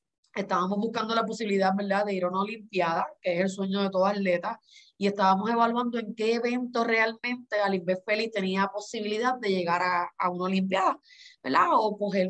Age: 20-39